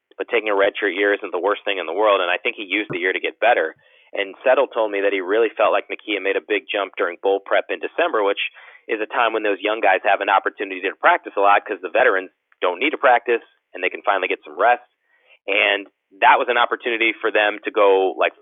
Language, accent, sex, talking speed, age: English, American, male, 260 wpm, 30-49